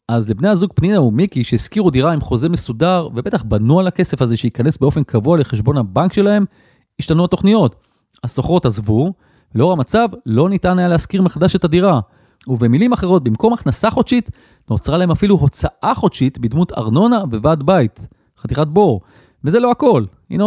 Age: 30-49